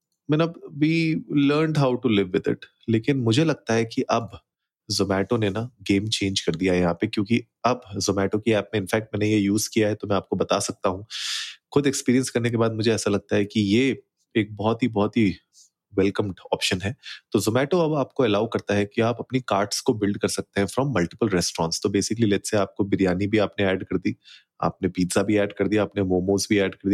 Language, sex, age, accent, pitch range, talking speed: Hindi, male, 30-49, native, 100-120 Hz, 140 wpm